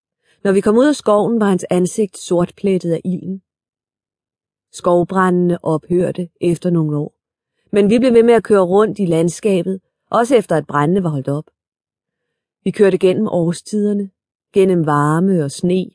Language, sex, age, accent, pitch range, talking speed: Danish, female, 30-49, native, 170-205 Hz, 160 wpm